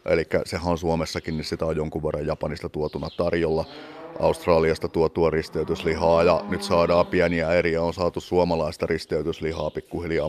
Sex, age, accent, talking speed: male, 30-49, native, 145 wpm